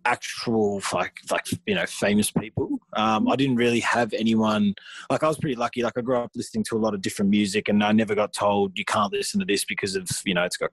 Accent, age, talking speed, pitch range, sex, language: Australian, 20-39, 250 wpm, 100-130 Hz, male, English